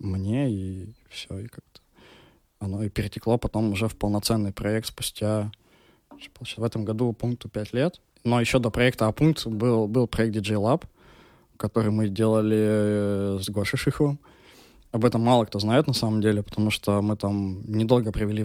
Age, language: 20-39, Russian